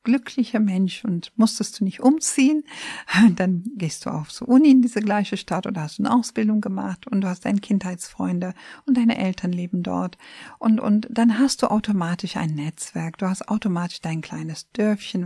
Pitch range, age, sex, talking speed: 175-230 Hz, 50-69, female, 175 wpm